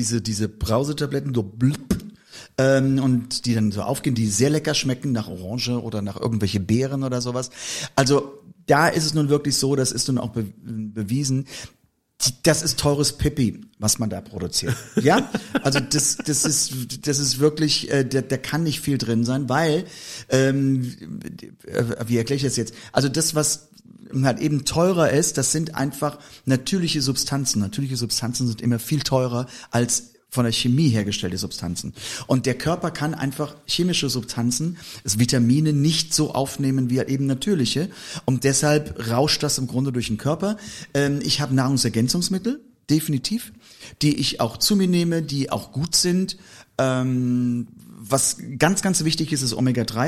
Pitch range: 120-150 Hz